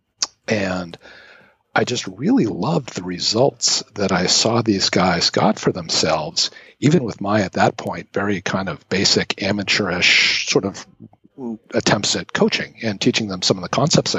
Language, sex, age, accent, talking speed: English, male, 40-59, American, 160 wpm